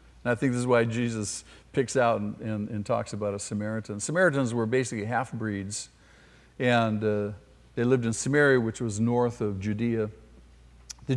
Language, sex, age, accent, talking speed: English, male, 50-69, American, 170 wpm